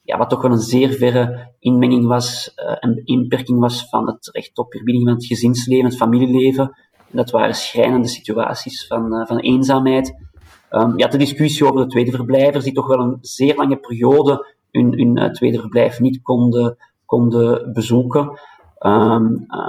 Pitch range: 120-140 Hz